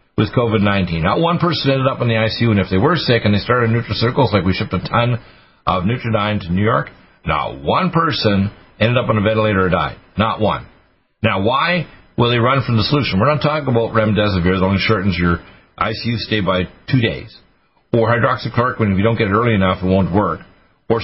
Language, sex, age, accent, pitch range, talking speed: English, male, 50-69, American, 95-120 Hz, 220 wpm